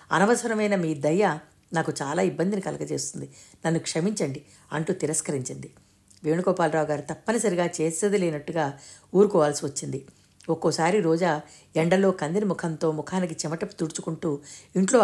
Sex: female